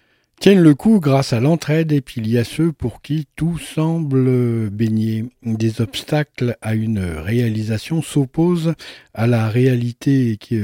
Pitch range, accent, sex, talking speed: 115-150 Hz, French, male, 150 wpm